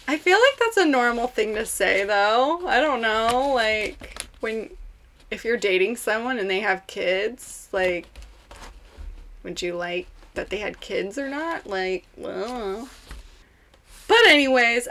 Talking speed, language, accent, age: 150 wpm, English, American, 20-39